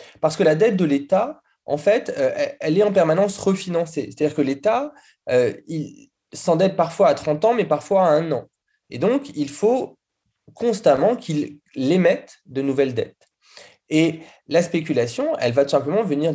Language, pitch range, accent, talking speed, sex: French, 140-205 Hz, French, 165 wpm, male